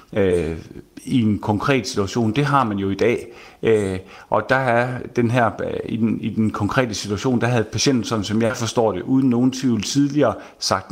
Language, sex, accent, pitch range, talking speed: Danish, male, native, 105-135 Hz, 185 wpm